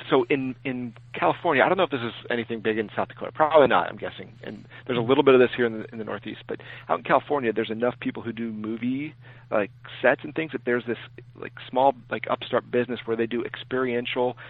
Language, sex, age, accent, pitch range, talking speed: English, male, 40-59, American, 115-130 Hz, 240 wpm